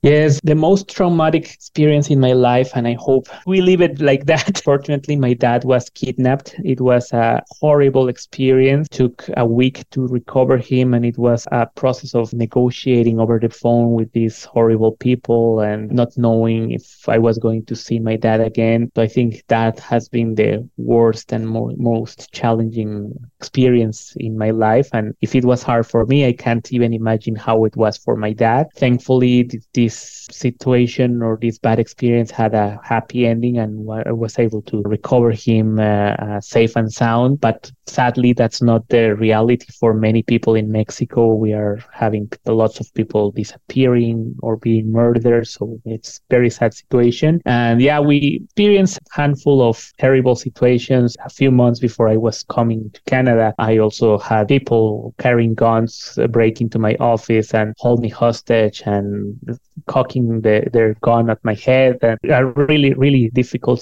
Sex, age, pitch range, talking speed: male, 20-39, 110-130 Hz, 175 wpm